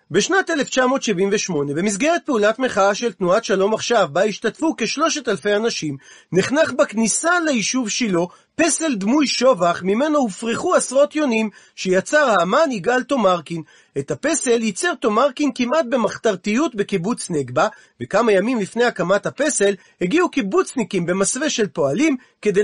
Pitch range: 200-290 Hz